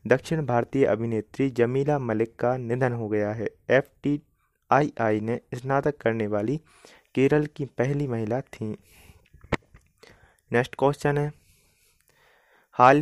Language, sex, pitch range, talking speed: Hindi, male, 115-140 Hz, 125 wpm